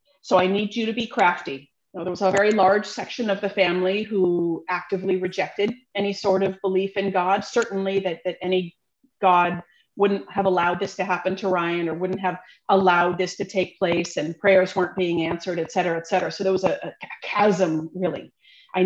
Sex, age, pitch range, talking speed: female, 40-59, 175-200 Hz, 200 wpm